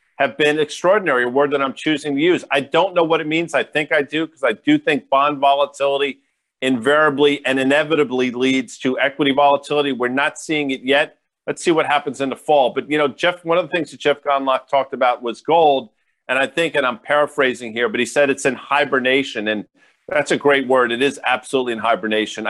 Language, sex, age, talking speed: English, male, 40-59, 235 wpm